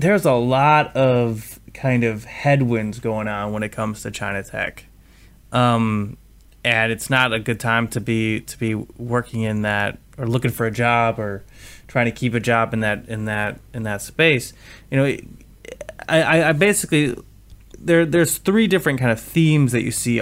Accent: American